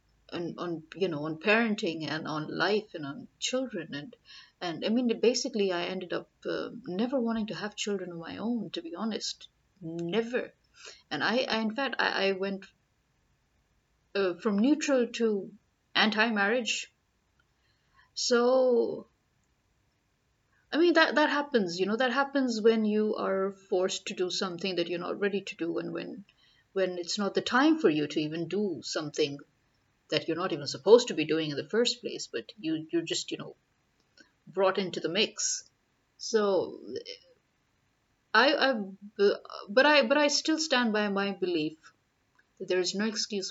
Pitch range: 180-240 Hz